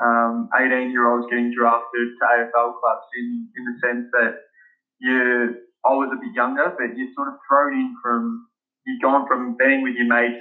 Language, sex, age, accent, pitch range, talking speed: English, male, 20-39, Australian, 120-135 Hz, 190 wpm